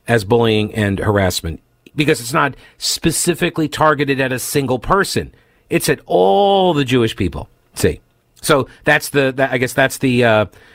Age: 50-69